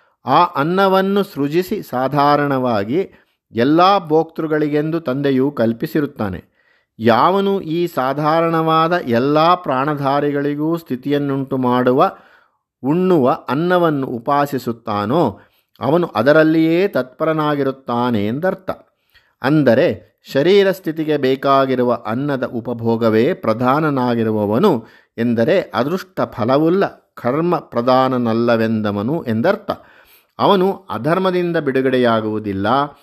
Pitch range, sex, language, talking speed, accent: 115-155 Hz, male, Kannada, 70 wpm, native